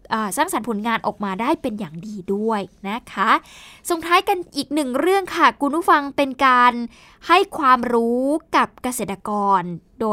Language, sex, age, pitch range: Thai, female, 20-39, 215-280 Hz